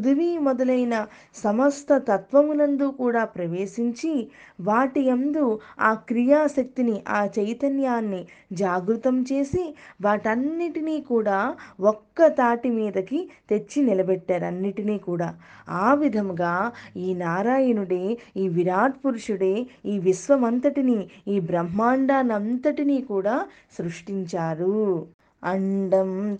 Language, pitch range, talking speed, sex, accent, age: Telugu, 195-255 Hz, 85 wpm, female, native, 20-39